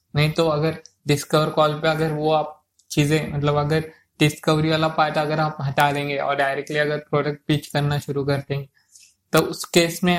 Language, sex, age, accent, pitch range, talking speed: Hindi, male, 20-39, native, 135-155 Hz, 190 wpm